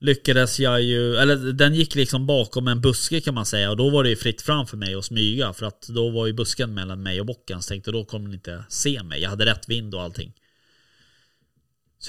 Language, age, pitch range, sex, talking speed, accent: Swedish, 30-49, 100-130 Hz, male, 235 wpm, native